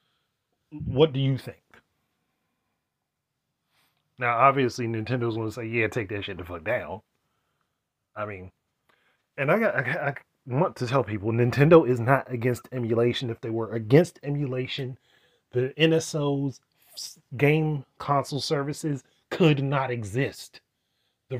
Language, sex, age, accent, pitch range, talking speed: English, male, 30-49, American, 115-145 Hz, 130 wpm